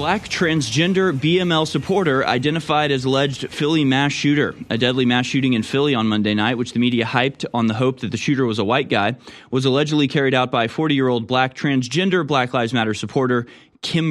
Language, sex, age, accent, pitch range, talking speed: English, male, 20-39, American, 110-140 Hz, 205 wpm